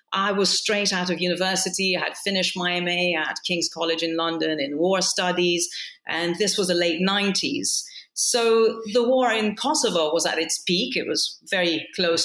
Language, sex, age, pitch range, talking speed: English, female, 40-59, 165-210 Hz, 185 wpm